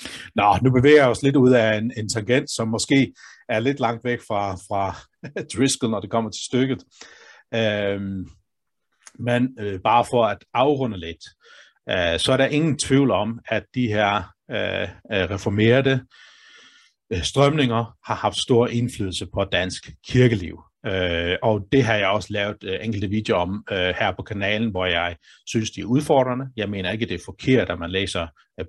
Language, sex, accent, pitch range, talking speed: Danish, male, native, 95-120 Hz, 175 wpm